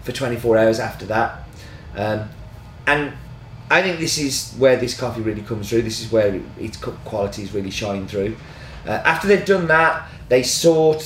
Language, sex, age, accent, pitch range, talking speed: English, male, 30-49, British, 105-130 Hz, 185 wpm